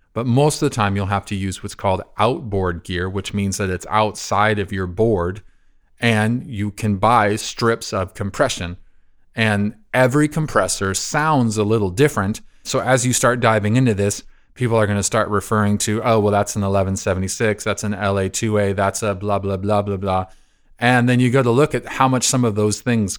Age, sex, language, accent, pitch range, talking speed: 30-49, male, English, American, 100-125 Hz, 200 wpm